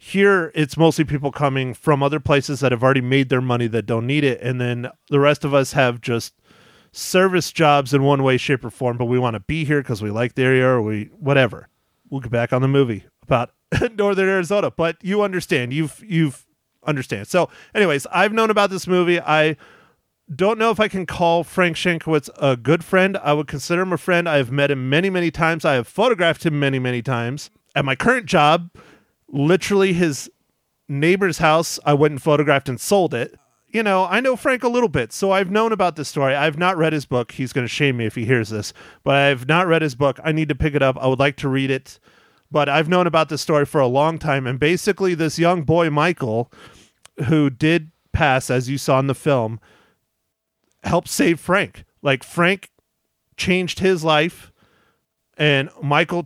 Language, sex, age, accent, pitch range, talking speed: English, male, 30-49, American, 130-170 Hz, 210 wpm